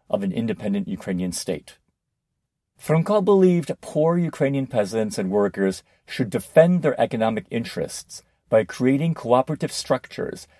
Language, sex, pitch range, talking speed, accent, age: English, male, 95-150 Hz, 120 wpm, American, 50-69